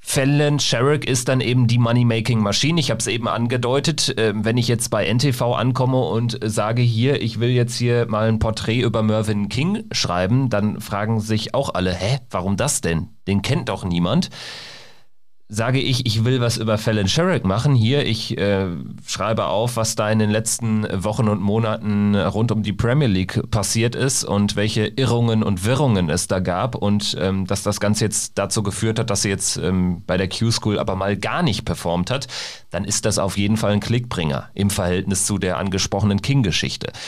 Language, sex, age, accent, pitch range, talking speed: German, male, 40-59, German, 105-125 Hz, 190 wpm